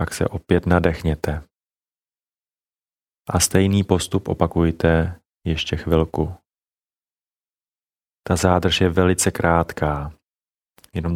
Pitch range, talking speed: 85-95 Hz, 85 wpm